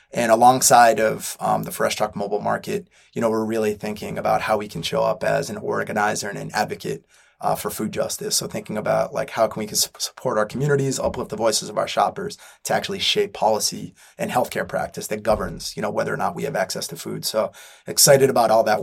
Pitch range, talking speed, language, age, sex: 110-140 Hz, 225 wpm, English, 20-39, male